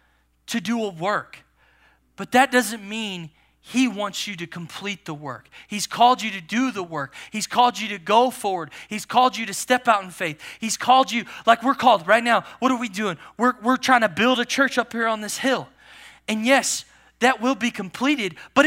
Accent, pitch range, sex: American, 205-260 Hz, male